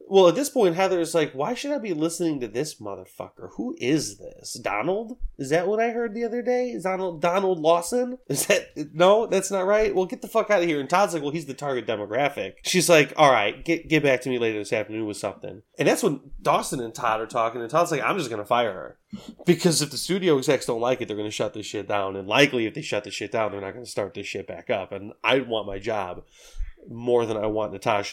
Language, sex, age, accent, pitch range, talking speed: English, male, 20-39, American, 110-165 Hz, 260 wpm